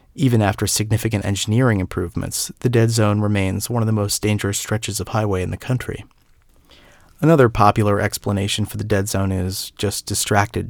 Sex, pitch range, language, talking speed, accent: male, 100-115 Hz, English, 170 wpm, American